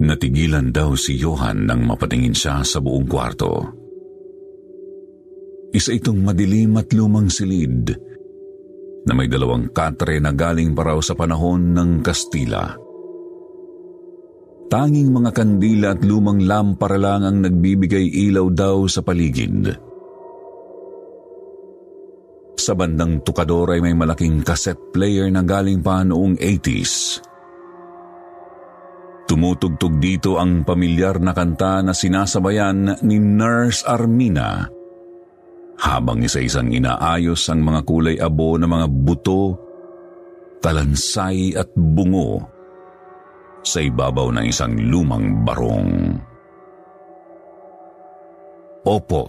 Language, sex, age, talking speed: Filipino, male, 50-69, 100 wpm